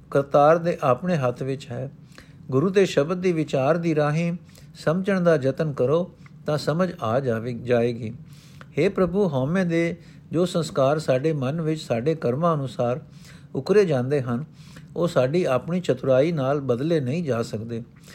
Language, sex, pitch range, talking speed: Punjabi, male, 135-170 Hz, 155 wpm